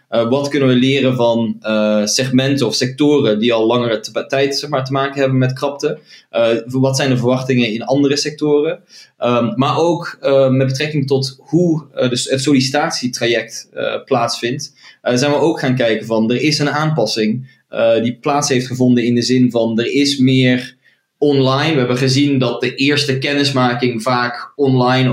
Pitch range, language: 120-140 Hz, Dutch